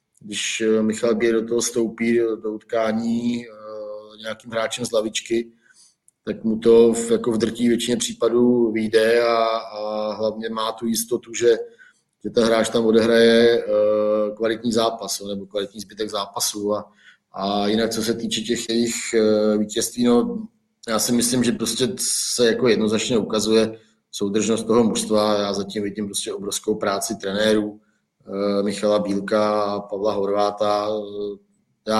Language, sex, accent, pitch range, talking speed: Czech, male, native, 105-115 Hz, 140 wpm